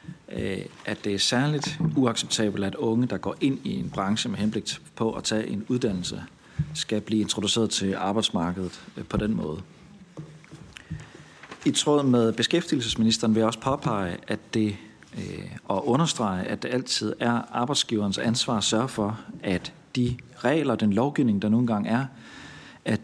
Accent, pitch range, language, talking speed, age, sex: native, 105-130 Hz, Danish, 150 wpm, 40-59, male